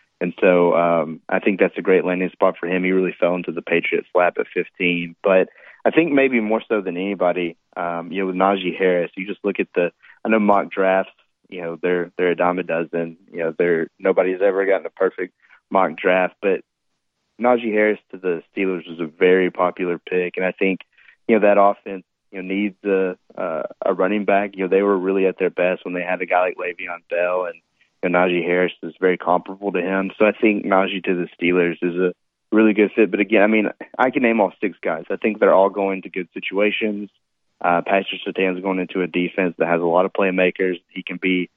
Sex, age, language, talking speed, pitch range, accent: male, 20-39, English, 230 wpm, 90-100 Hz, American